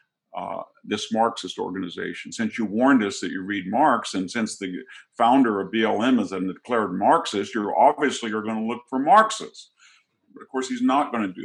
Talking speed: 200 wpm